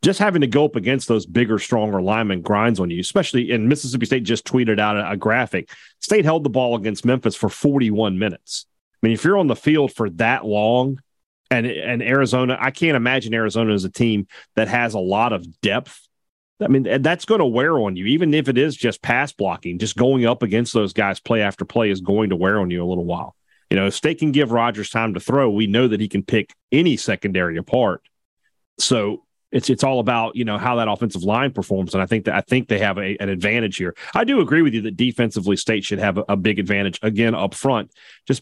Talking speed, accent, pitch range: 235 wpm, American, 105-125 Hz